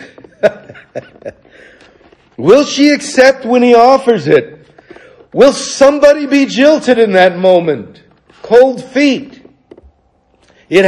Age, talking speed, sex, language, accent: 60-79, 95 wpm, male, English, American